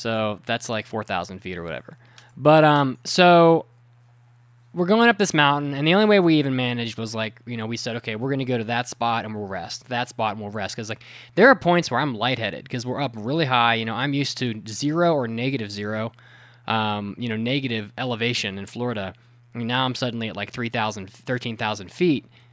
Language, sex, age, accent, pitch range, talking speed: English, male, 20-39, American, 115-140 Hz, 220 wpm